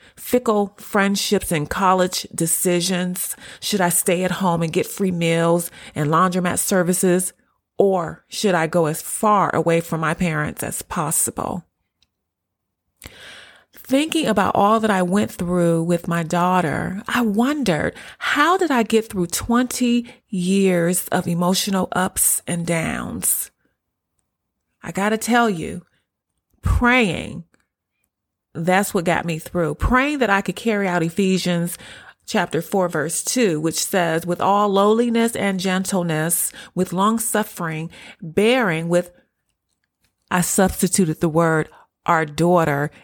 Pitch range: 160-200 Hz